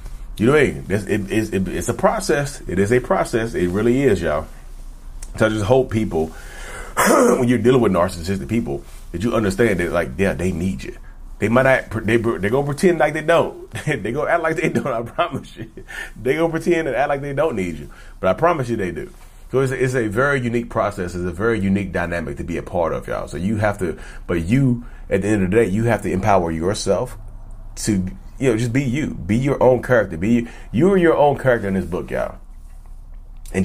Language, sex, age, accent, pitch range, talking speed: English, male, 30-49, American, 95-130 Hz, 230 wpm